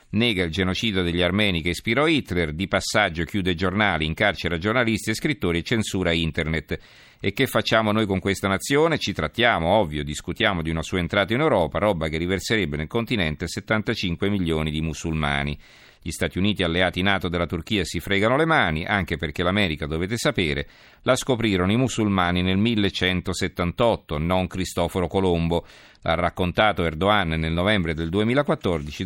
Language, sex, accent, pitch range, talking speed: Italian, male, native, 85-105 Hz, 160 wpm